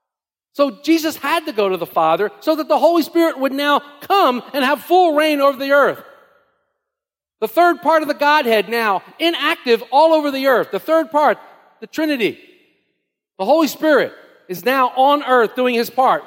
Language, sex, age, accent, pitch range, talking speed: English, male, 50-69, American, 195-290 Hz, 185 wpm